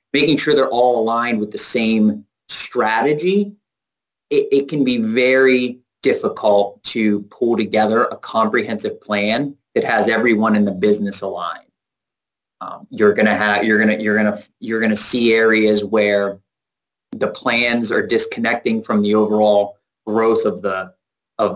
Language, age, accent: English, 30-49, American